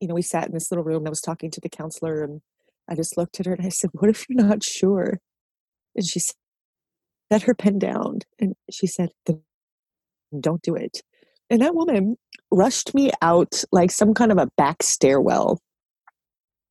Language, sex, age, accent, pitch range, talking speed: English, female, 30-49, American, 155-195 Hz, 195 wpm